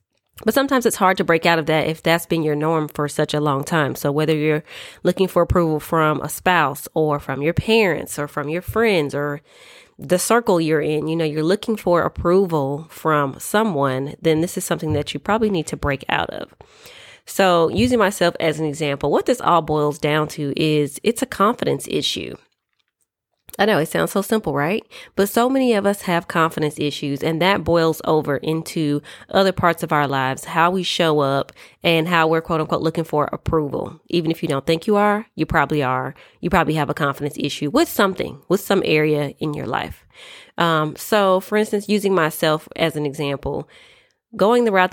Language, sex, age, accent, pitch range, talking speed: English, female, 30-49, American, 150-185 Hz, 200 wpm